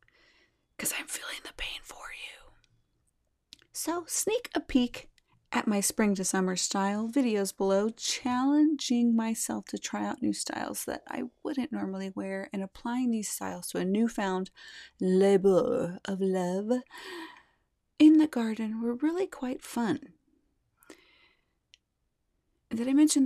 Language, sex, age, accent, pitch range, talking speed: English, female, 30-49, American, 180-255 Hz, 130 wpm